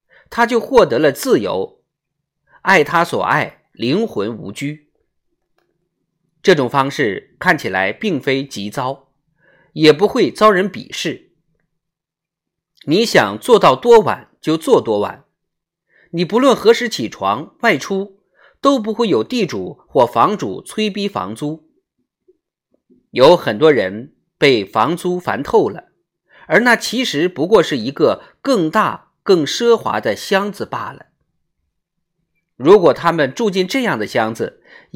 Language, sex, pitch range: Chinese, male, 165-250 Hz